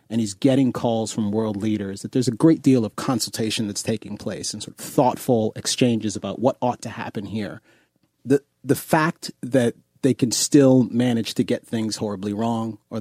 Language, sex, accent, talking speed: English, male, American, 195 wpm